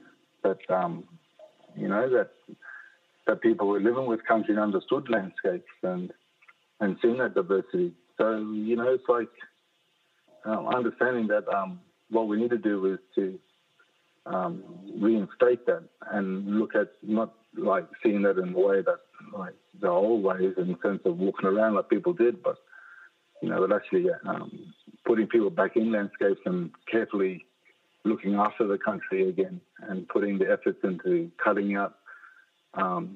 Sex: male